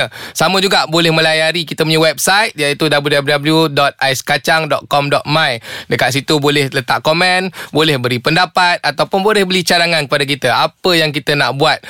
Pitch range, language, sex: 145-180 Hz, Malay, male